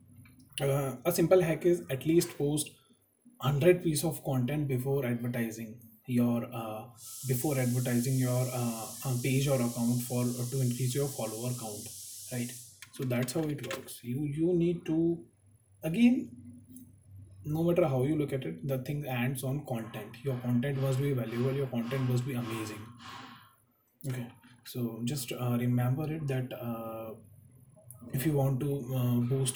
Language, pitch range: English, 120-140 Hz